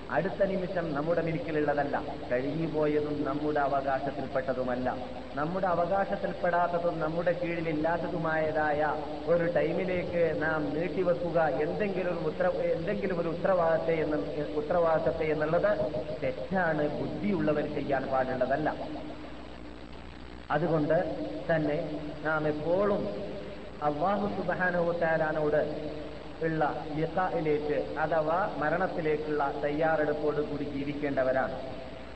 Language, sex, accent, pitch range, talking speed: Malayalam, male, native, 150-170 Hz, 80 wpm